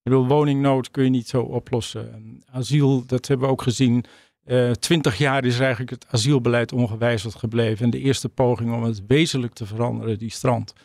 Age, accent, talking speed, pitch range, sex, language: 50-69, Dutch, 195 wpm, 120-140 Hz, male, Dutch